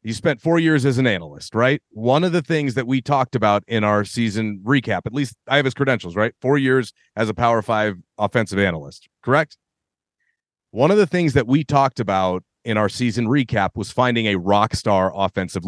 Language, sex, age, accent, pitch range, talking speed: English, male, 30-49, American, 110-135 Hz, 205 wpm